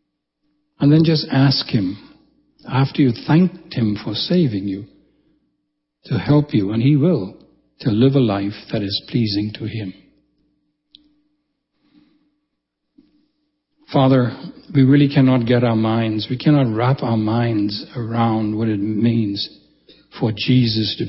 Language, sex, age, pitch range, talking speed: English, male, 60-79, 110-145 Hz, 130 wpm